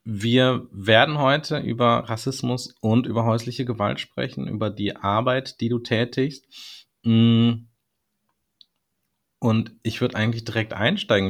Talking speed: 115 wpm